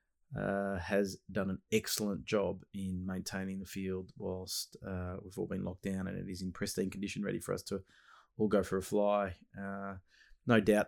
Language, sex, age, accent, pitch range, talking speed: English, male, 30-49, Australian, 100-110 Hz, 195 wpm